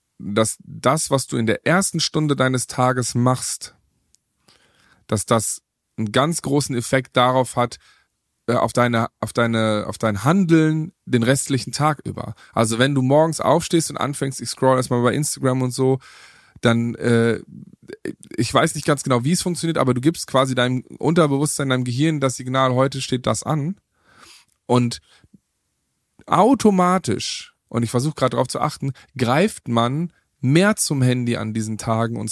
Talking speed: 160 wpm